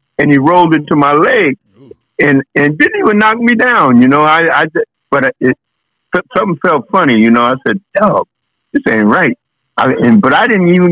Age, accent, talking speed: 60-79, American, 205 wpm